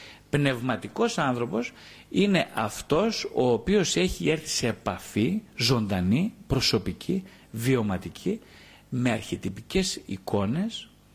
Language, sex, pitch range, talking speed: Greek, male, 105-155 Hz, 85 wpm